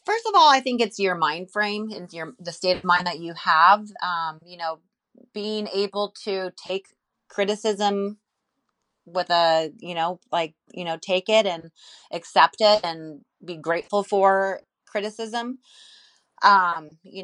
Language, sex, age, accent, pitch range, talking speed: English, female, 30-49, American, 170-205 Hz, 155 wpm